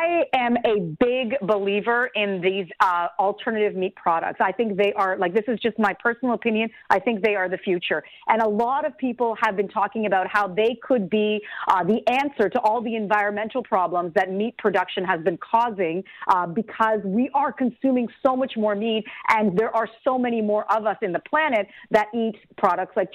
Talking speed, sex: 205 wpm, female